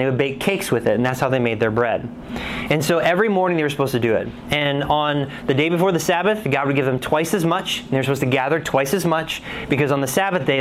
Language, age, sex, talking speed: English, 20-39, male, 290 wpm